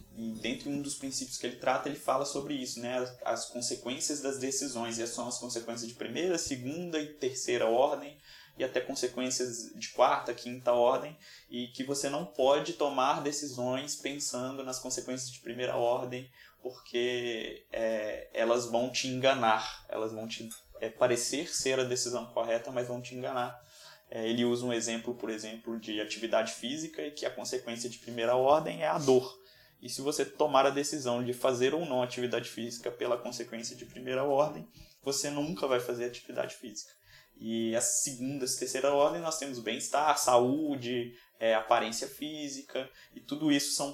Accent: Brazilian